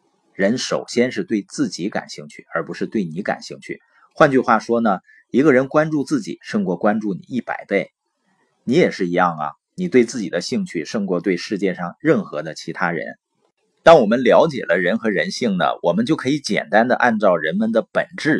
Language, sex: Chinese, male